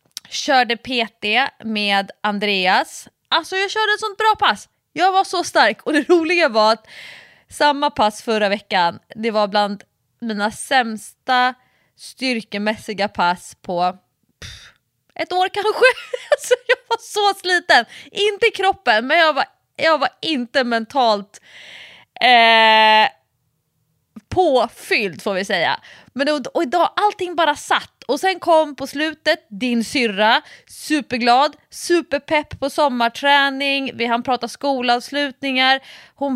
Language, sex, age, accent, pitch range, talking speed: Swedish, female, 20-39, native, 215-345 Hz, 125 wpm